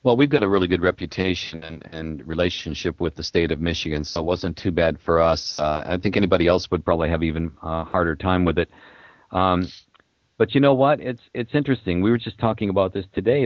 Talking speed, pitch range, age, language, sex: 225 wpm, 85-105 Hz, 50-69, English, male